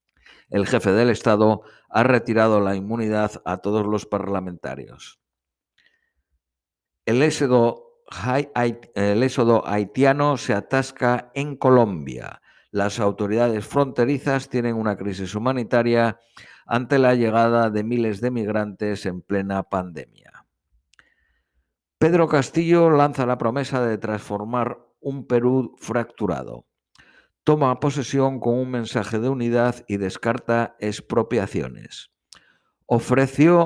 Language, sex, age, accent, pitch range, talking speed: Spanish, male, 50-69, Spanish, 105-130 Hz, 100 wpm